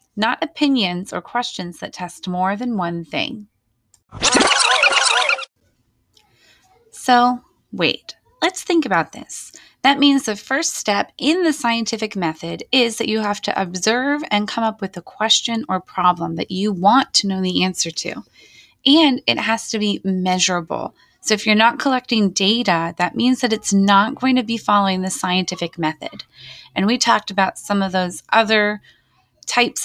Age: 20-39